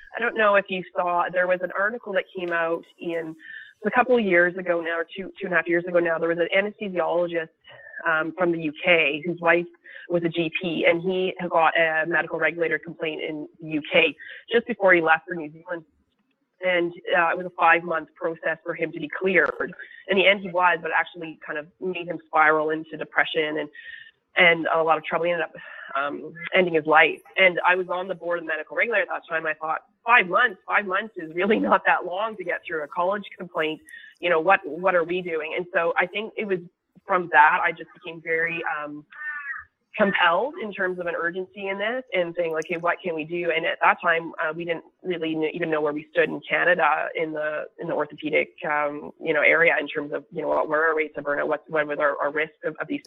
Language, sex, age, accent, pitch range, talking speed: English, female, 20-39, American, 160-190 Hz, 235 wpm